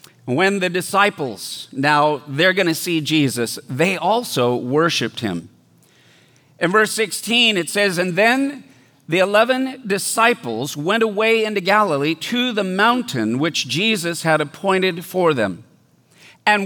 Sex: male